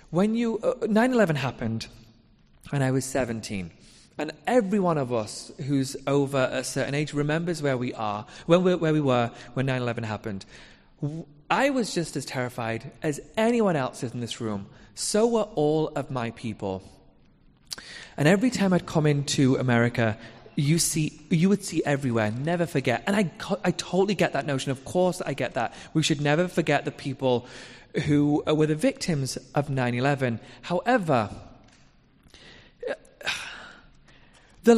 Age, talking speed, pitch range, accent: 30-49, 160 wpm, 130-195 Hz, British